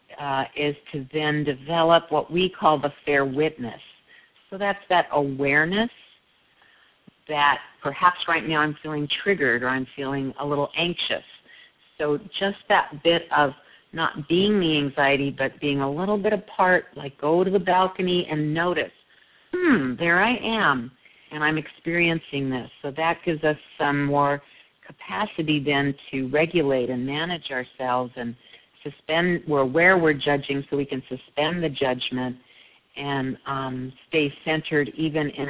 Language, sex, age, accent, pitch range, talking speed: English, female, 50-69, American, 135-165 Hz, 150 wpm